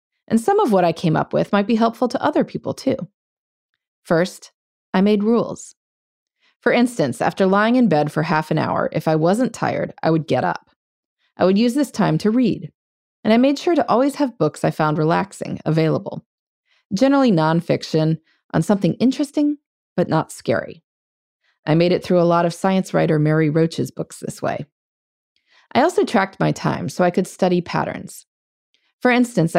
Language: English